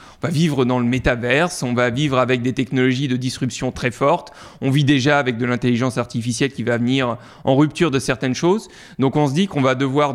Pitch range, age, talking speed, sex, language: 125-145 Hz, 20-39, 225 wpm, male, French